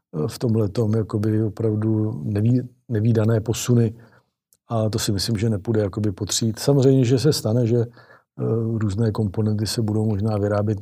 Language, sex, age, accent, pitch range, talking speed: Czech, male, 50-69, native, 105-115 Hz, 150 wpm